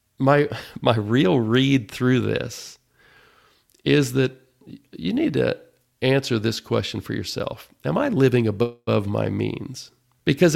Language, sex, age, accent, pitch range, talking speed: English, male, 50-69, American, 110-135 Hz, 130 wpm